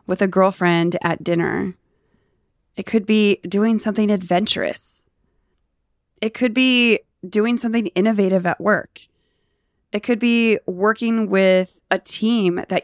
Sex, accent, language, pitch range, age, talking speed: female, American, English, 185-225 Hz, 20-39, 125 wpm